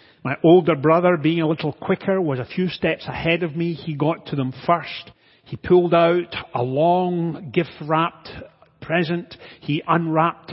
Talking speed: 160 wpm